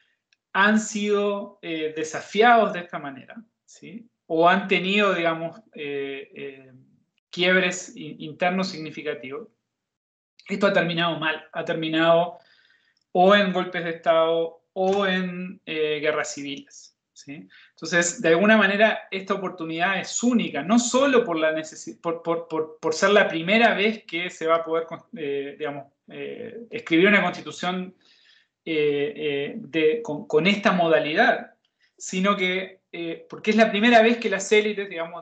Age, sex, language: 20-39, male, Spanish